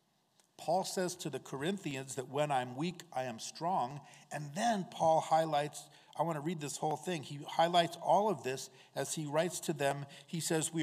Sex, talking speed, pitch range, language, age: male, 200 wpm, 120-170 Hz, English, 50-69